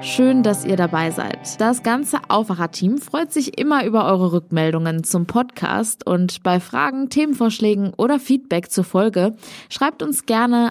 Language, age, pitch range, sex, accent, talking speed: German, 20-39, 190-250 Hz, female, German, 150 wpm